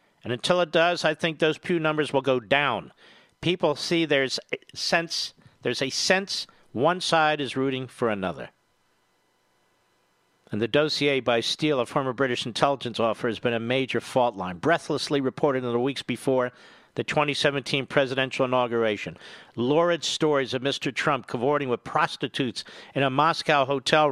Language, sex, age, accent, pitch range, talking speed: English, male, 50-69, American, 130-170 Hz, 155 wpm